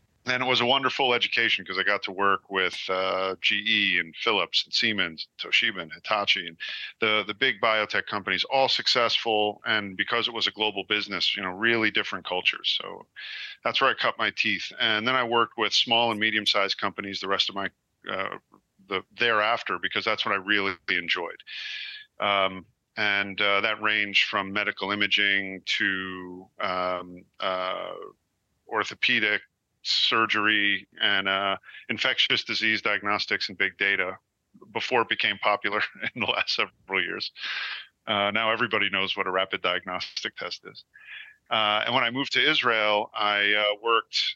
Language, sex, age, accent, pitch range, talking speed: English, male, 40-59, American, 95-115 Hz, 165 wpm